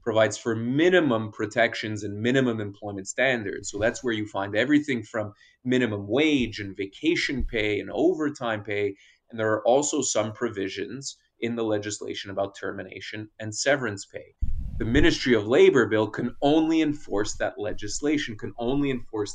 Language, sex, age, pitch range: English, male, 20-39, 100-125 Hz